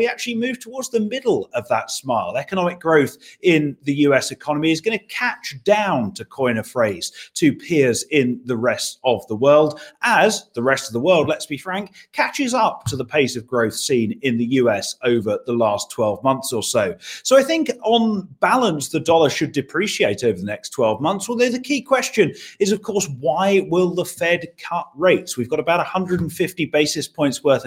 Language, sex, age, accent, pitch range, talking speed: English, male, 30-49, British, 135-200 Hz, 200 wpm